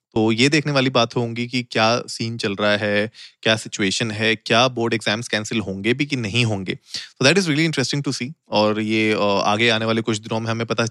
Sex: male